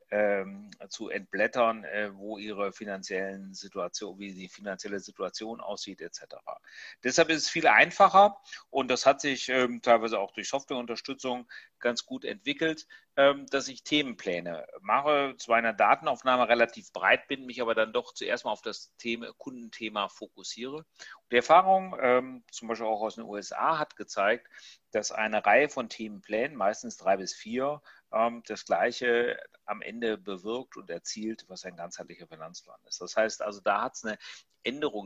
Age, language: 40-59, German